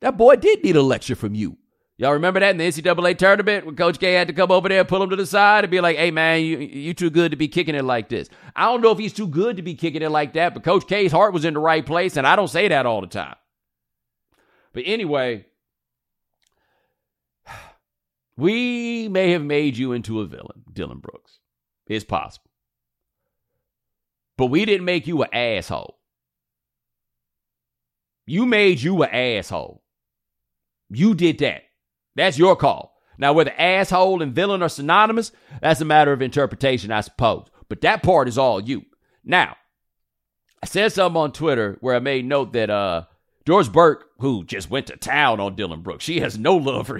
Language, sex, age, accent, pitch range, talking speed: English, male, 40-59, American, 120-180 Hz, 195 wpm